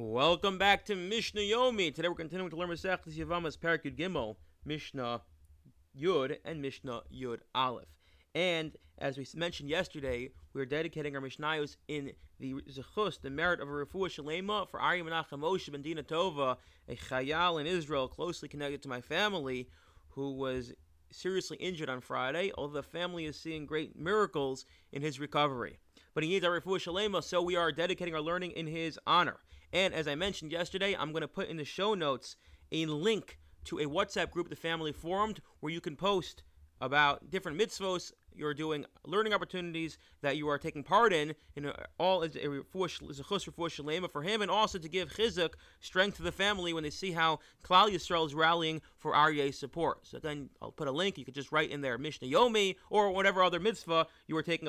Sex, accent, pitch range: male, American, 140-180 Hz